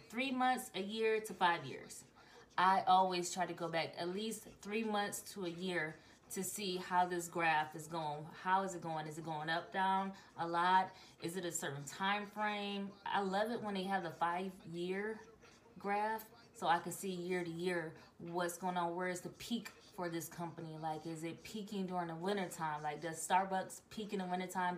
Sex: female